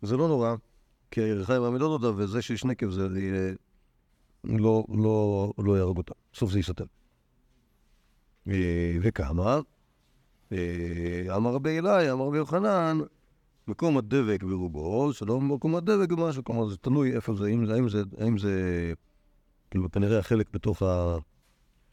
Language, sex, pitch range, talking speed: Hebrew, male, 95-135 Hz, 125 wpm